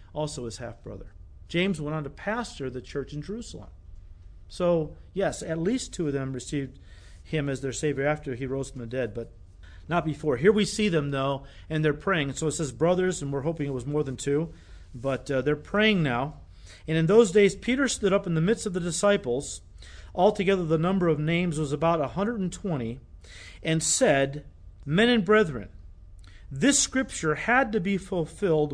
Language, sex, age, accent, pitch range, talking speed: English, male, 40-59, American, 125-195 Hz, 190 wpm